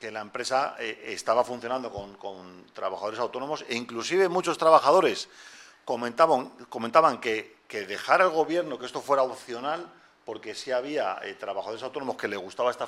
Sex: male